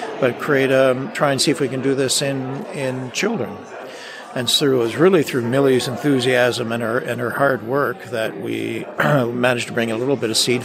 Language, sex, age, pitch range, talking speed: English, male, 60-79, 110-130 Hz, 215 wpm